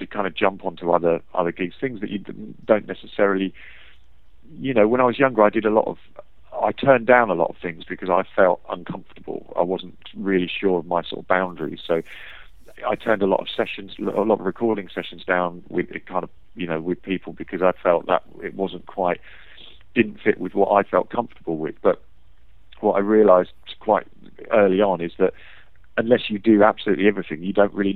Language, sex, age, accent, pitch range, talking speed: English, male, 40-59, British, 85-100 Hz, 205 wpm